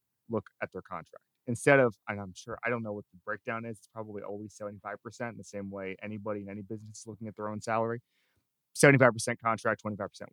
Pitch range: 105-130 Hz